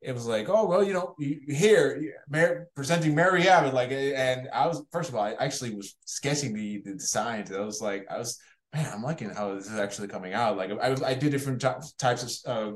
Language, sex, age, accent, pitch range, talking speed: English, male, 20-39, American, 110-145 Hz, 225 wpm